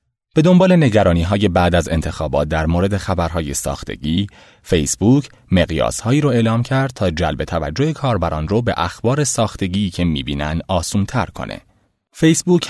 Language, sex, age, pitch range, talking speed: Persian, male, 30-49, 80-125 Hz, 140 wpm